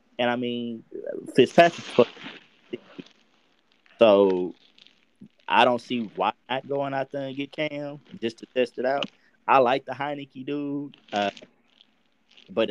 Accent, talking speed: American, 135 wpm